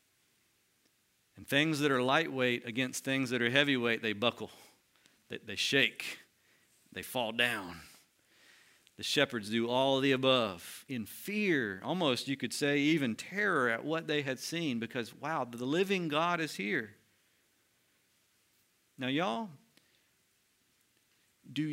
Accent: American